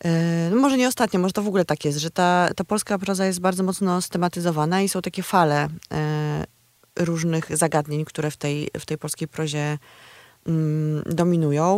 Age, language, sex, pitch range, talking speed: 20-39, Polish, female, 155-205 Hz, 160 wpm